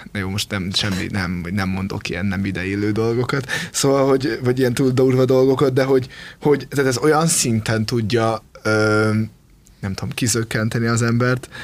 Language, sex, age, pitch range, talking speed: Hungarian, male, 20-39, 105-125 Hz, 165 wpm